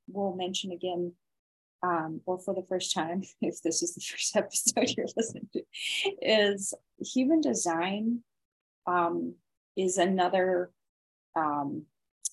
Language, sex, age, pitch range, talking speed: English, female, 20-39, 170-220 Hz, 125 wpm